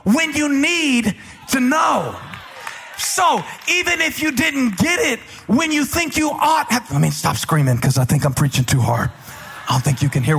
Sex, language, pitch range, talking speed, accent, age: male, English, 155-245 Hz, 195 wpm, American, 40-59